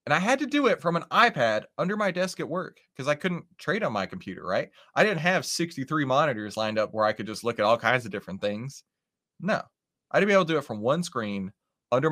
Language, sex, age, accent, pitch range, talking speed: English, male, 30-49, American, 115-180 Hz, 260 wpm